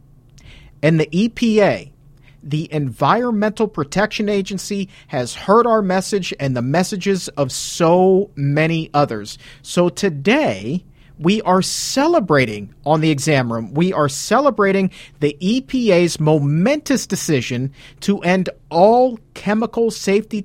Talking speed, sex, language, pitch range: 115 wpm, male, English, 140-200 Hz